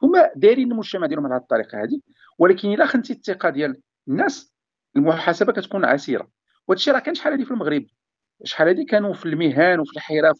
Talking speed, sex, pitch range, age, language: 180 wpm, male, 170-285 Hz, 50-69, Arabic